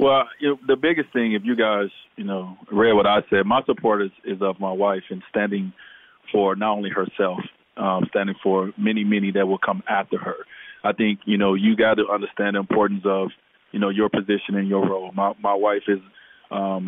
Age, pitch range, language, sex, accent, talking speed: 20-39, 100-110 Hz, English, male, American, 215 wpm